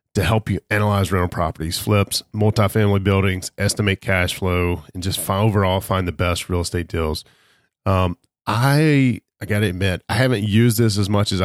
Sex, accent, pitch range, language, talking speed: male, American, 90-110 Hz, English, 185 wpm